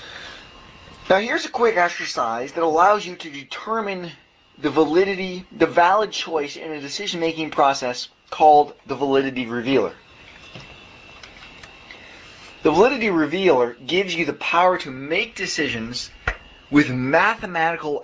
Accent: American